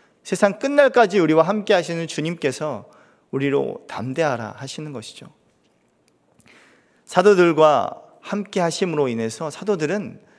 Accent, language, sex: native, Korean, male